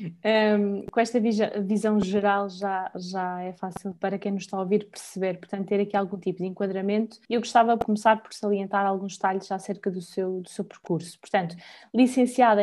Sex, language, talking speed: female, Portuguese, 185 wpm